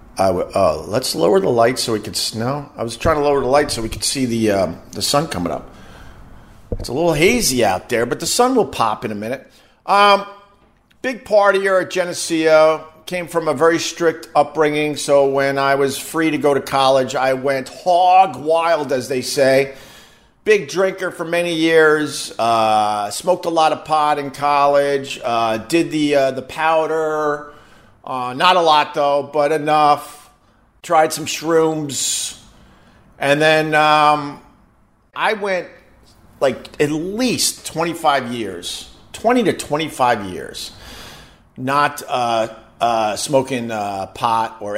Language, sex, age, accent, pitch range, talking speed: English, male, 50-69, American, 130-165 Hz, 160 wpm